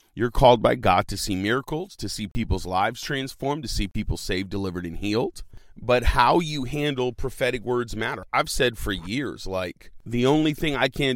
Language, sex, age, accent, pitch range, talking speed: English, male, 40-59, American, 100-125 Hz, 195 wpm